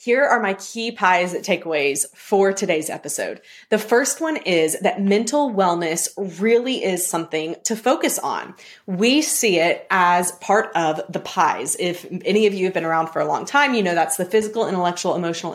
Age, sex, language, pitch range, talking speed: 20-39, female, English, 175-220 Hz, 185 wpm